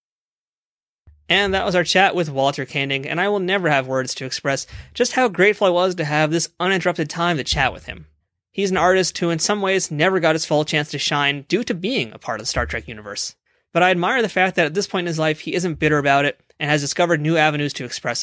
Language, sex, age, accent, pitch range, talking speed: English, male, 30-49, American, 145-190 Hz, 255 wpm